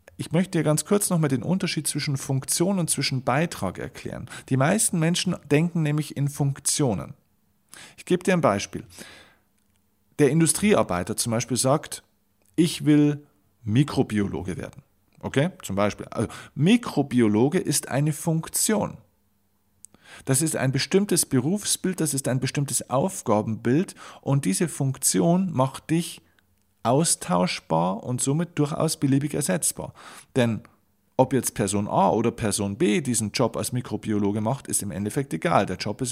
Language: German